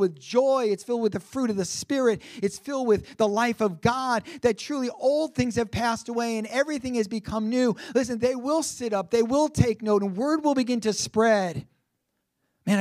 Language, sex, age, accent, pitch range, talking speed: English, male, 40-59, American, 210-245 Hz, 210 wpm